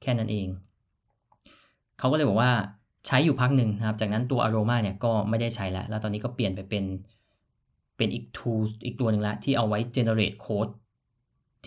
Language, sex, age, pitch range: Thai, male, 20-39, 105-125 Hz